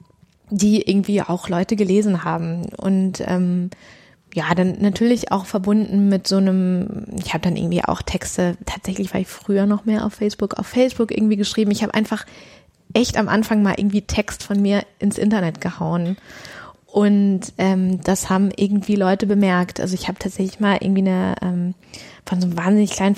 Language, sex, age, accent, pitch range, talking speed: German, female, 20-39, German, 185-210 Hz, 175 wpm